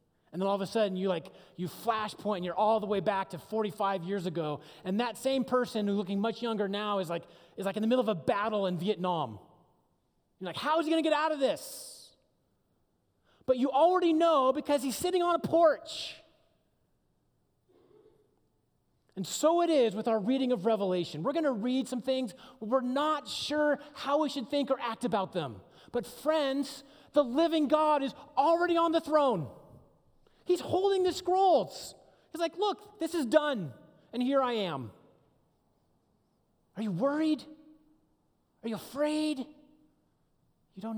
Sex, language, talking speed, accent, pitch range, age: male, English, 175 wpm, American, 175-295 Hz, 30-49